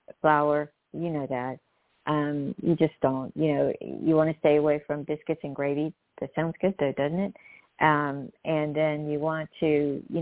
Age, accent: 50-69, American